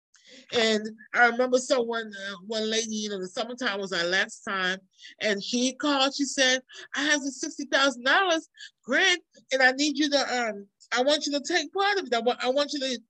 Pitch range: 225-280 Hz